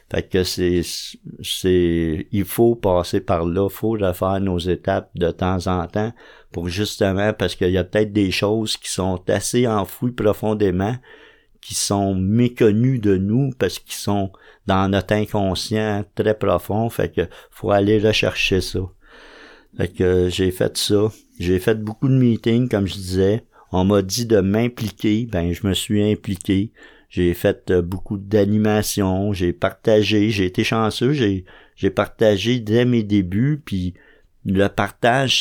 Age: 50-69